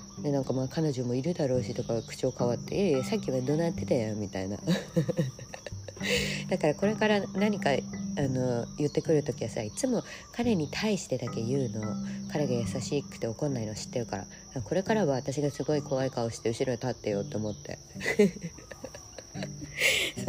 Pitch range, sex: 125-180 Hz, female